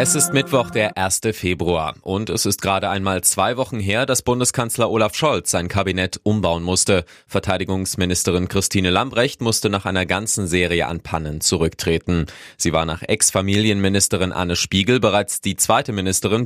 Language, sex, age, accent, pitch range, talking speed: German, male, 20-39, German, 90-110 Hz, 155 wpm